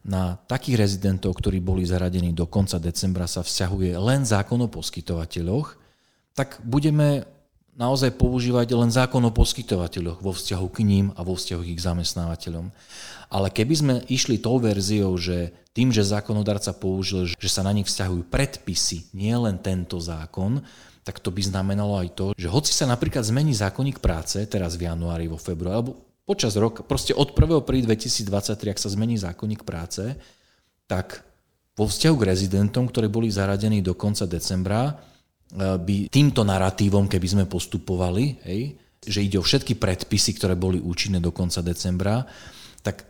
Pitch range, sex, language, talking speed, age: 90-115 Hz, male, Slovak, 160 wpm, 40-59